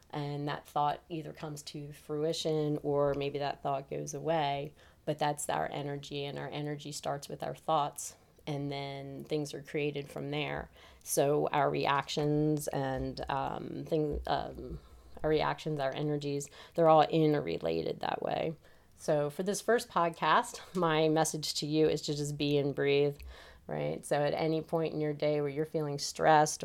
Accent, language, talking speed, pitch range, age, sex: American, English, 165 wpm, 140-155 Hz, 30-49, female